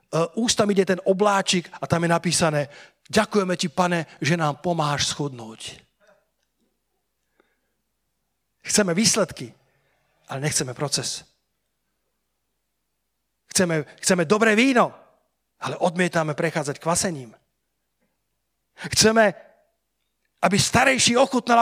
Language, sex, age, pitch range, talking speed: Slovak, male, 40-59, 145-200 Hz, 95 wpm